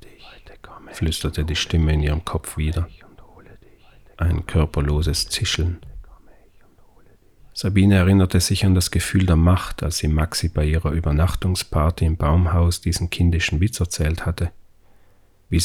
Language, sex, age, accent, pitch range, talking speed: German, male, 40-59, German, 85-95 Hz, 125 wpm